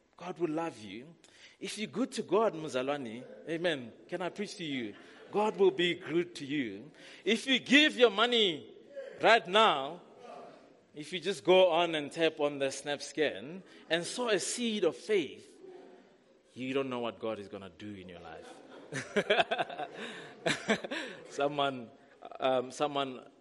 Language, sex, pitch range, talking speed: English, male, 120-175 Hz, 155 wpm